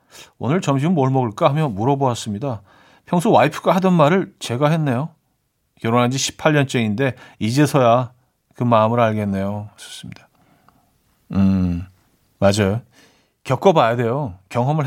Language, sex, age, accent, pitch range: Korean, male, 40-59, native, 115-155 Hz